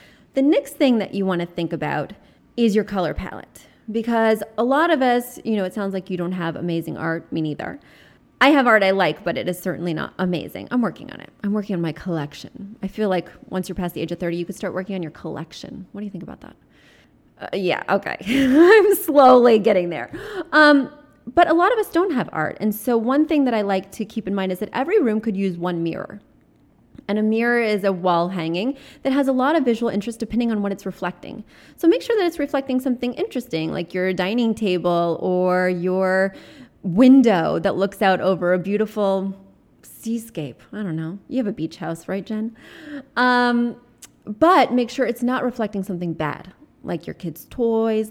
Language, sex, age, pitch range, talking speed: English, female, 20-39, 185-255 Hz, 215 wpm